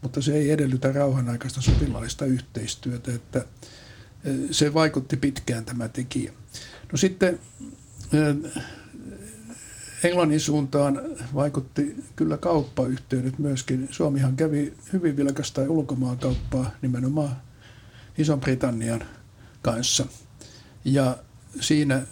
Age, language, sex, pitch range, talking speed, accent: 60-79, Finnish, male, 125-145 Hz, 85 wpm, native